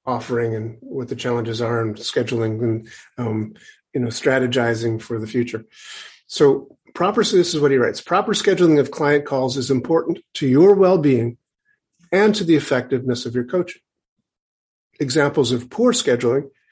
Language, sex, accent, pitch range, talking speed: English, male, American, 130-170 Hz, 160 wpm